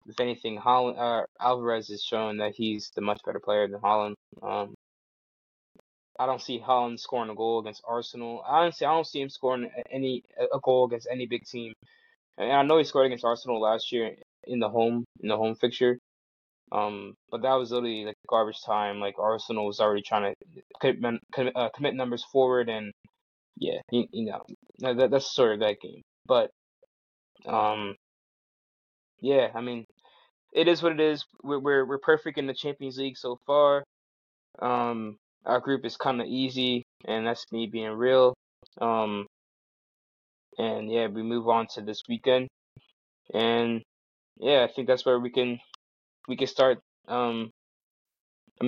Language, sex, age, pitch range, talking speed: English, male, 20-39, 110-130 Hz, 170 wpm